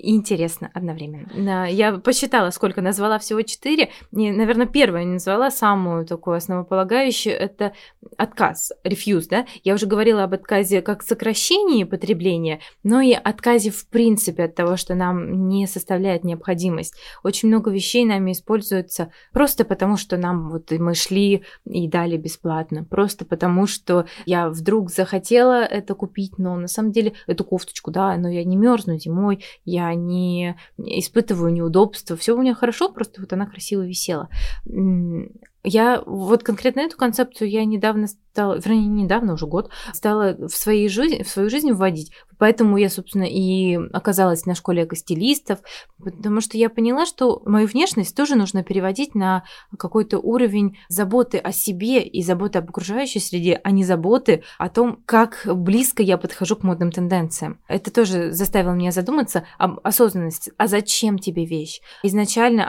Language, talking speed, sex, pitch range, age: Russian, 150 wpm, female, 180-220 Hz, 20-39